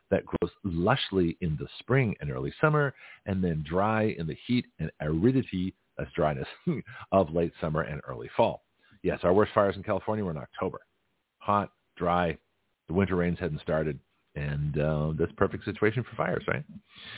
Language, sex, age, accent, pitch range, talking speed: English, male, 50-69, American, 80-105 Hz, 170 wpm